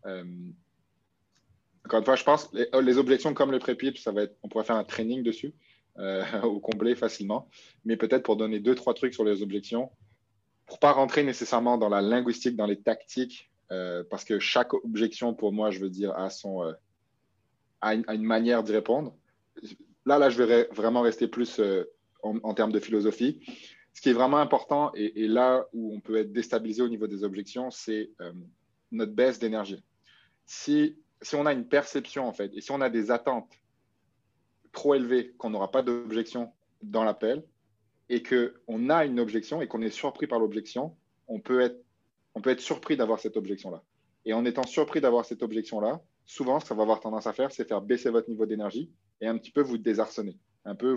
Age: 20-39